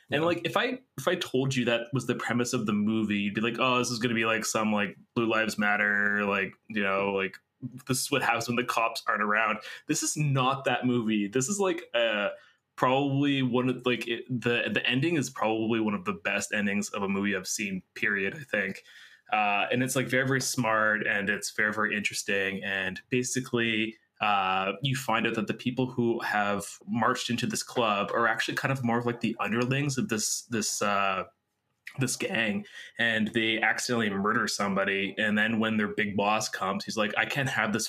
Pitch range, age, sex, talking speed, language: 105-130 Hz, 20-39, male, 210 wpm, English